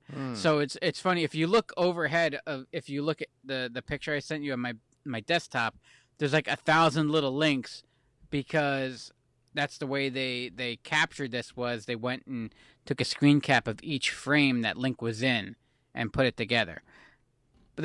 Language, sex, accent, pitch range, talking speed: English, male, American, 130-160 Hz, 190 wpm